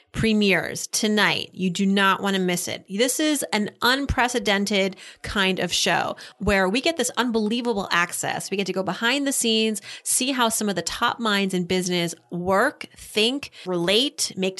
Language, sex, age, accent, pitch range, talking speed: English, female, 30-49, American, 180-230 Hz, 175 wpm